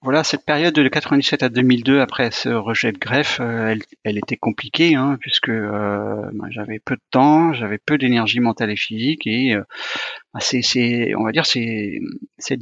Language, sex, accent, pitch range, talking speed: French, male, French, 110-145 Hz, 190 wpm